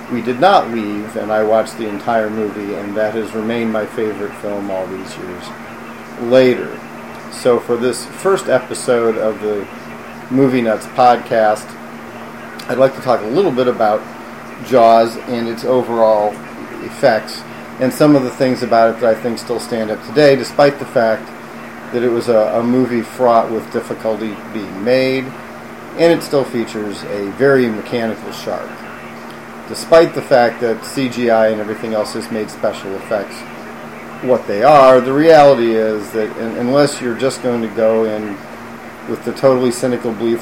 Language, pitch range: English, 105-125 Hz